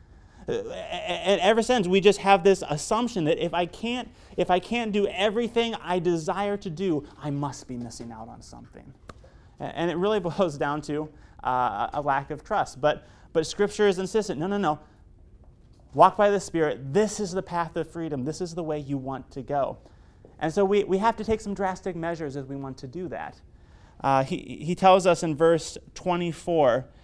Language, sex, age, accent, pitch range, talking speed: English, male, 30-49, American, 135-190 Hz, 200 wpm